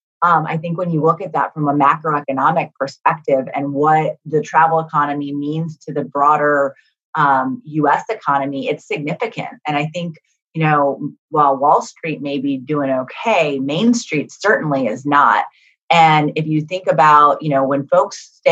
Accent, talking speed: American, 170 wpm